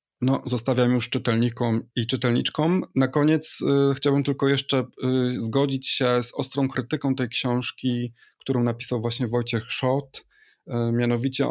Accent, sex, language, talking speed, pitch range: native, male, Polish, 140 wpm, 115-130 Hz